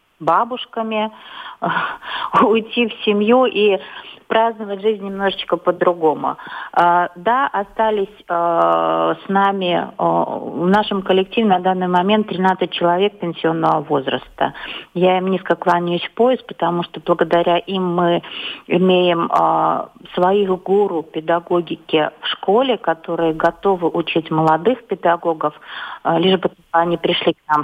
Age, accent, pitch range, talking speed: 40-59, native, 170-195 Hz, 110 wpm